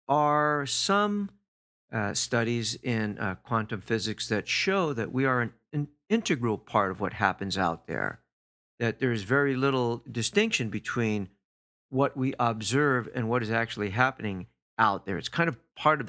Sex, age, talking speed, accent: male, 50-69, 165 wpm, American